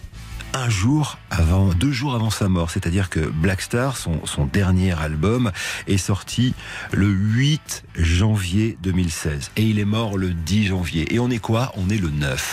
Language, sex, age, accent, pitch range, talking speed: French, male, 40-59, French, 85-110 Hz, 175 wpm